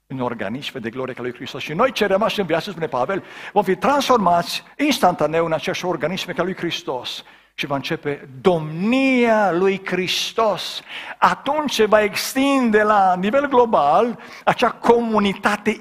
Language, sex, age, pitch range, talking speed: Romanian, male, 50-69, 155-215 Hz, 150 wpm